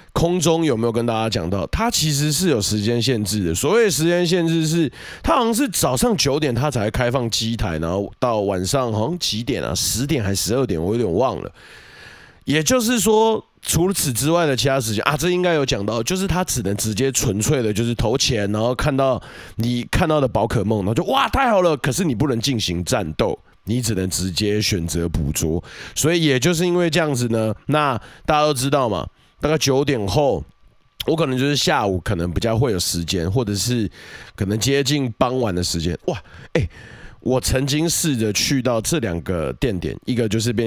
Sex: male